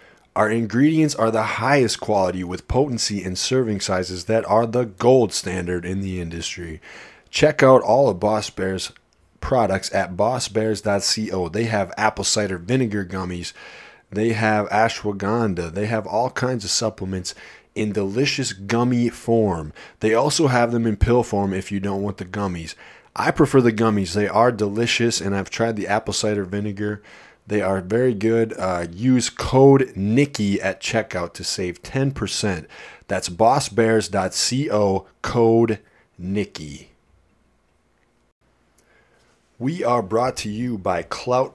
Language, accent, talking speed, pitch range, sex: English, American, 140 wpm, 95-120 Hz, male